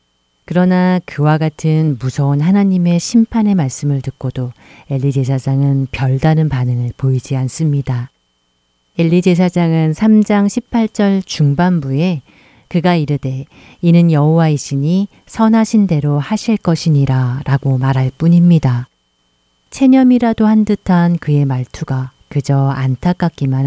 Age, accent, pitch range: 40-59, native, 130-165 Hz